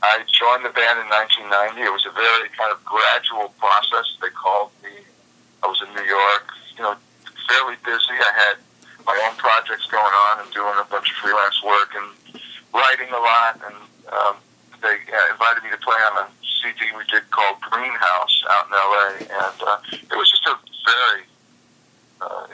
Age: 50-69